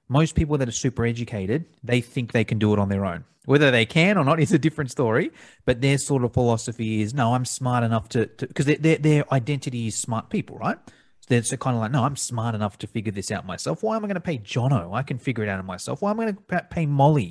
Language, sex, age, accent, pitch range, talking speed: English, male, 30-49, Australian, 115-150 Hz, 275 wpm